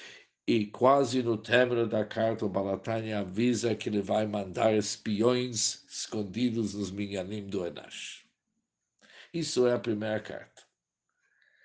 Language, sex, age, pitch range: Portuguese, male, 60-79, 105-125 Hz